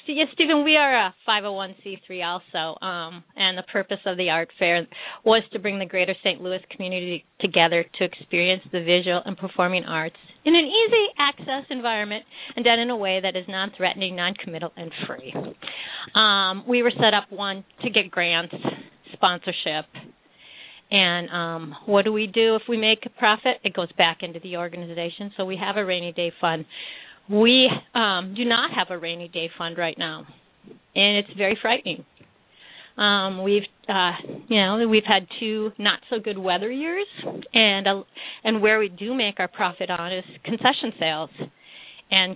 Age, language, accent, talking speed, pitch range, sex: 40-59, English, American, 175 wpm, 180-220 Hz, female